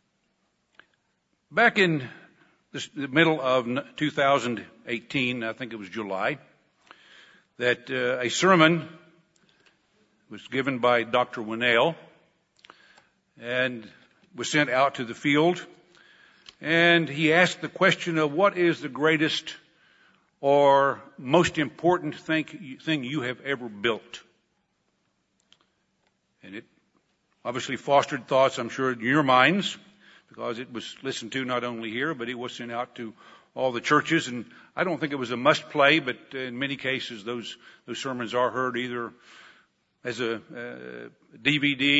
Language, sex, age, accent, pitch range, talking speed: English, male, 60-79, American, 120-155 Hz, 135 wpm